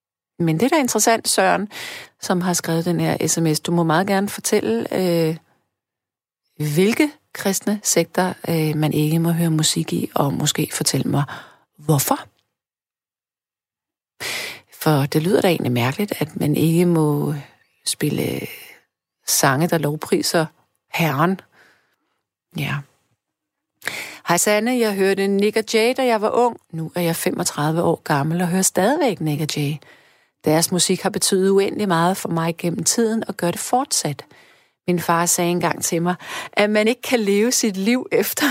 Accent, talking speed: native, 155 wpm